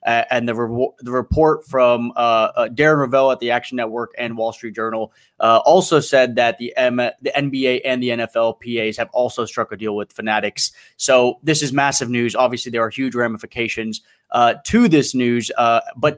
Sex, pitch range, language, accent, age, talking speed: male, 120-145 Hz, English, American, 20-39, 190 wpm